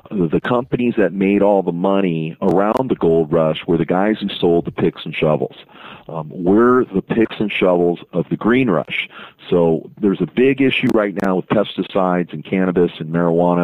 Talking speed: 190 wpm